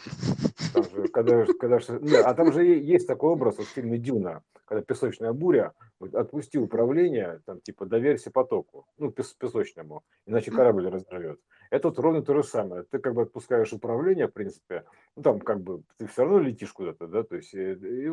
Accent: native